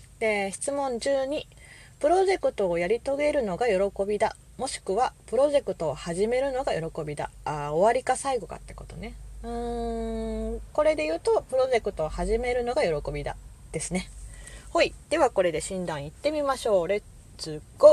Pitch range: 160-260 Hz